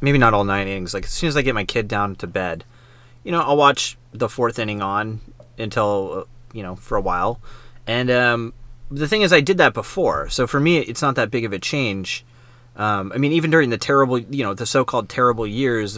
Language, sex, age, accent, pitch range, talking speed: English, male, 30-49, American, 105-130 Hz, 235 wpm